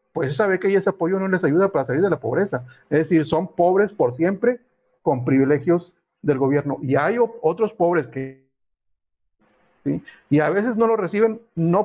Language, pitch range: Spanish, 140-190 Hz